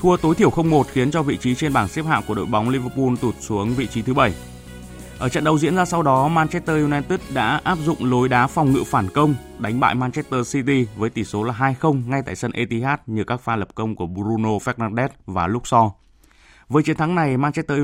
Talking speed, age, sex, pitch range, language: 230 wpm, 20-39, male, 110-140 Hz, Vietnamese